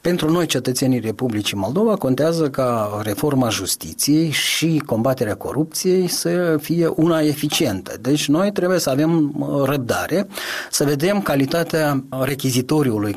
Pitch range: 130-160 Hz